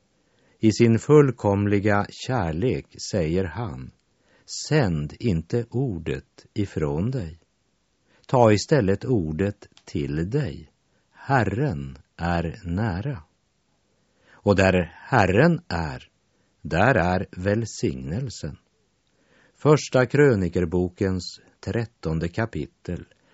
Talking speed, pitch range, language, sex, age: 75 wpm, 85-115 Hz, Swedish, male, 50-69